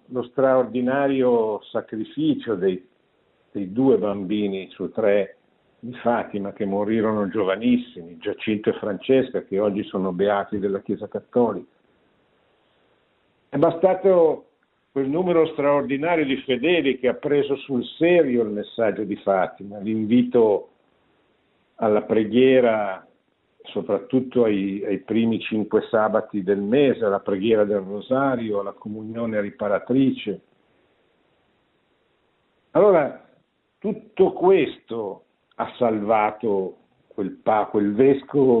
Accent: native